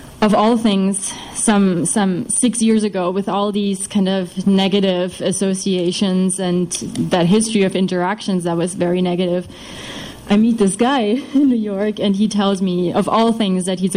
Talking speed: 170 wpm